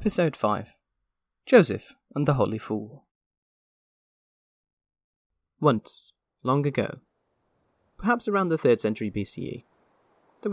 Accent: British